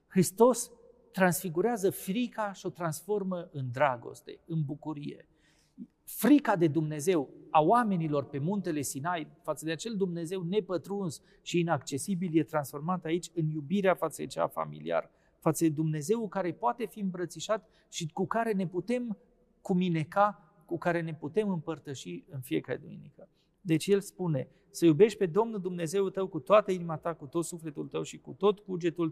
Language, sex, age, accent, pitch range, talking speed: Romanian, male, 40-59, native, 155-200 Hz, 155 wpm